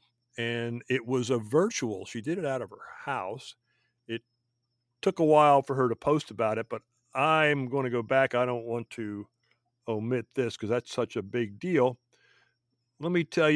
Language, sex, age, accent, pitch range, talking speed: English, male, 50-69, American, 120-145 Hz, 190 wpm